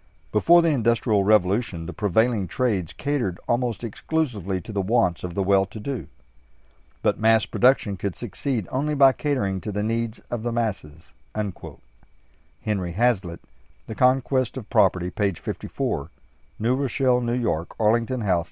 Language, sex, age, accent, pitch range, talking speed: English, male, 50-69, American, 90-120 Hz, 145 wpm